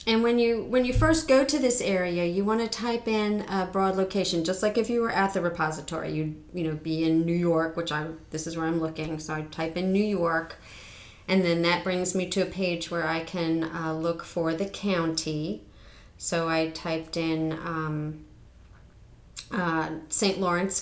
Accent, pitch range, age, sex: American, 165-195 Hz, 30-49, female